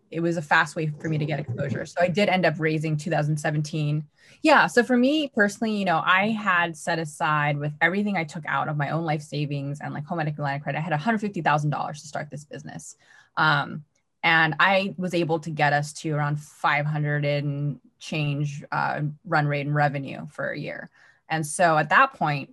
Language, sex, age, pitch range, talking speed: English, female, 20-39, 150-175 Hz, 210 wpm